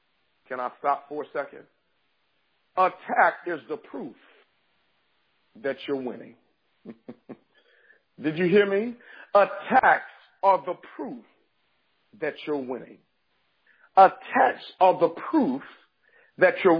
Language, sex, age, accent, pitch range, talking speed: English, male, 50-69, American, 185-245 Hz, 105 wpm